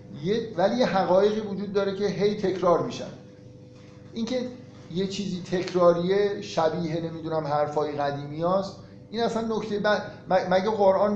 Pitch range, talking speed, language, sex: 150-195 Hz, 130 wpm, Persian, male